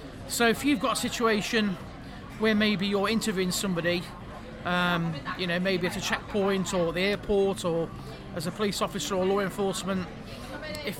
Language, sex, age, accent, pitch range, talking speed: English, male, 40-59, British, 185-220 Hz, 165 wpm